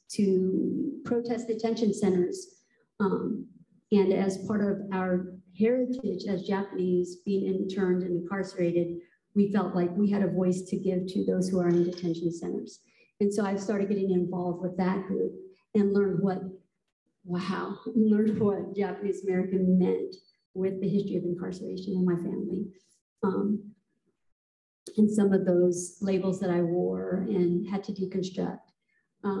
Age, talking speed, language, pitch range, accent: 50-69, 145 wpm, English, 180-205 Hz, American